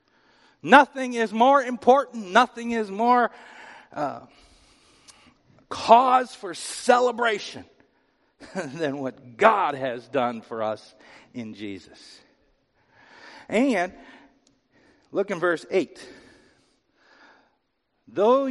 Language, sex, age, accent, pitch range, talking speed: English, male, 50-69, American, 135-225 Hz, 85 wpm